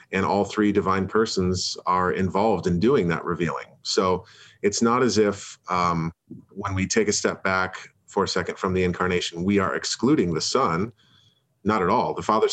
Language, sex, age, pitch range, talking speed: English, male, 30-49, 90-105 Hz, 185 wpm